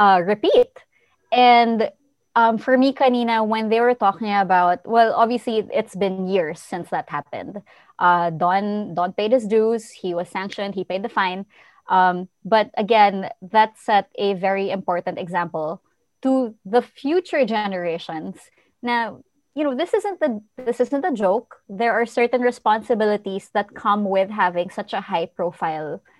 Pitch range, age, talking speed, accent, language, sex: 185-235 Hz, 20-39, 155 wpm, Filipino, English, female